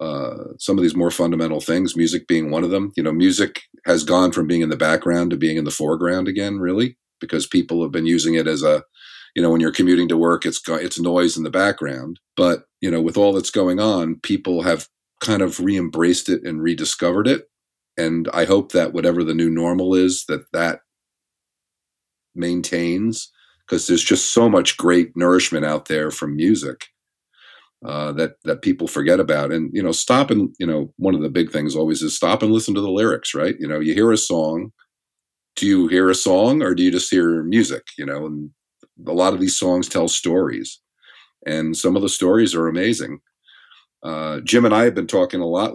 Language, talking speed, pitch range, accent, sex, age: English, 210 wpm, 80-90 Hz, American, male, 40-59